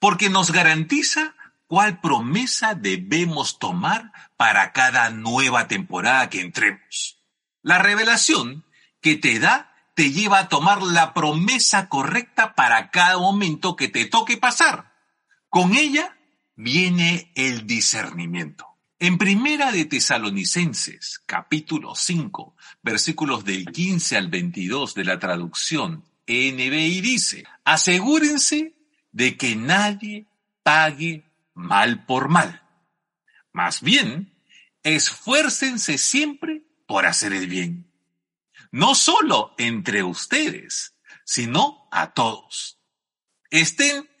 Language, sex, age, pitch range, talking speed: Spanish, male, 50-69, 155-240 Hz, 105 wpm